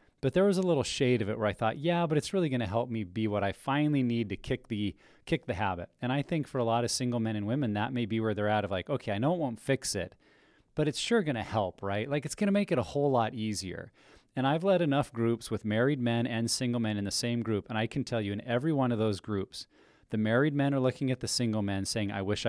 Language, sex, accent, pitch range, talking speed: English, male, American, 110-140 Hz, 295 wpm